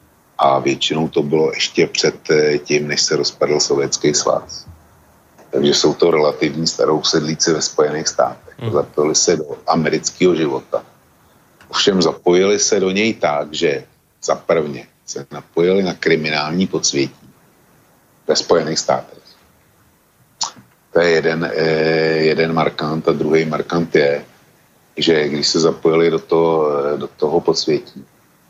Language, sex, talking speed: Slovak, male, 130 wpm